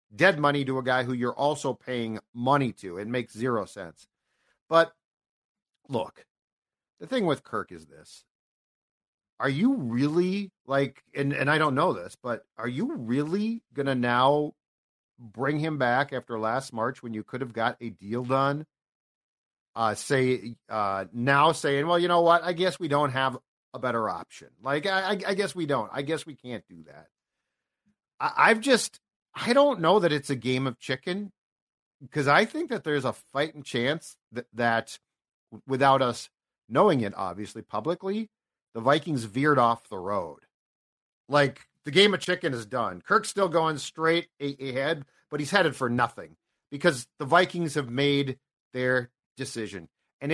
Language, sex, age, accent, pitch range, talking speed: English, male, 40-59, American, 125-170 Hz, 170 wpm